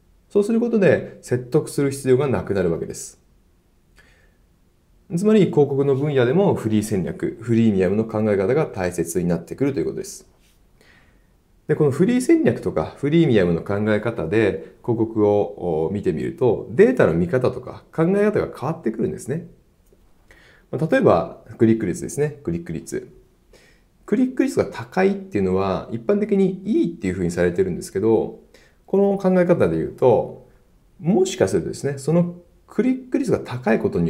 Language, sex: Japanese, male